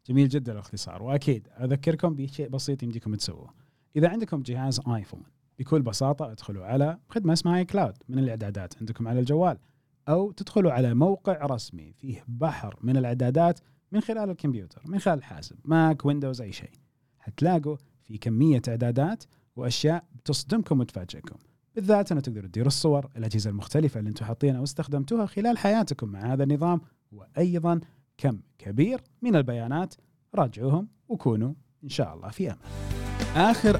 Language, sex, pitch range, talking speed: Arabic, male, 120-160 Hz, 140 wpm